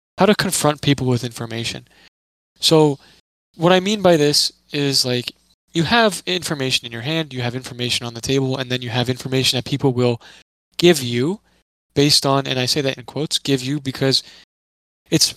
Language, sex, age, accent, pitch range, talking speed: English, male, 20-39, American, 120-145 Hz, 185 wpm